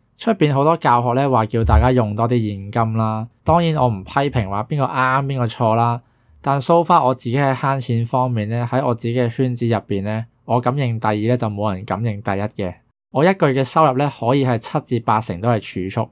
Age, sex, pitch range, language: 20-39, male, 110-135 Hz, Chinese